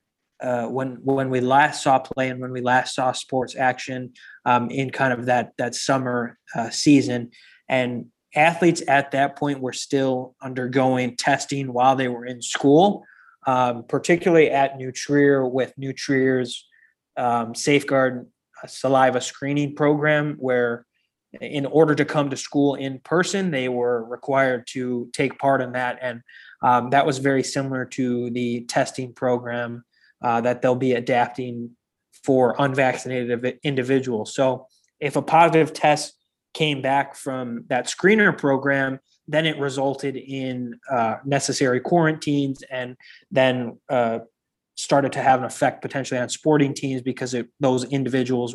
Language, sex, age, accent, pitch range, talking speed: English, male, 20-39, American, 125-140 Hz, 145 wpm